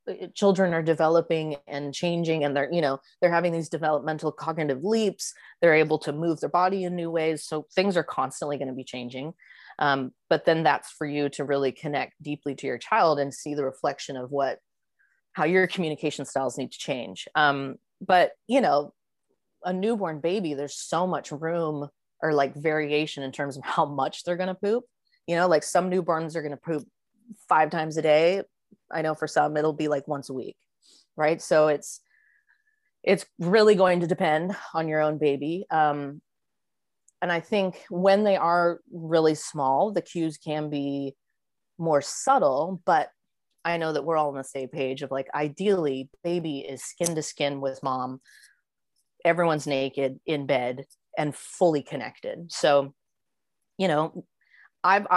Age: 30-49